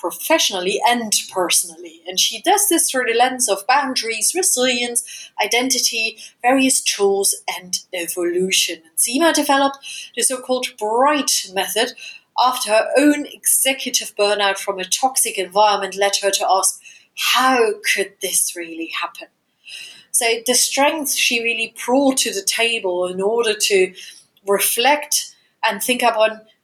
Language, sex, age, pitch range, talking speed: English, female, 30-49, 195-260 Hz, 135 wpm